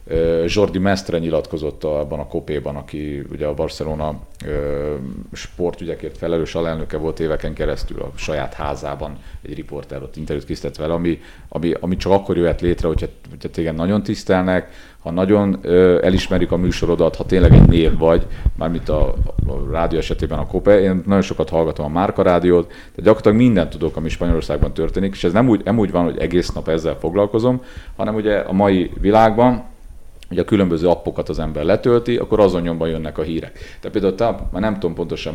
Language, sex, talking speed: Hungarian, male, 175 wpm